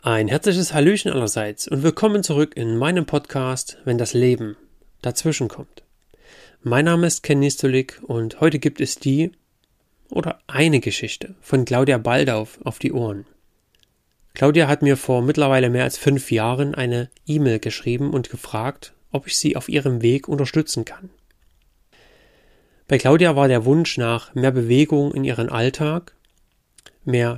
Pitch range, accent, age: 120-150 Hz, German, 30-49